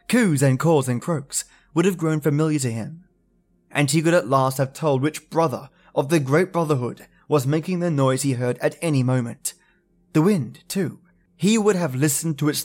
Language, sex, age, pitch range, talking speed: English, male, 20-39, 135-170 Hz, 200 wpm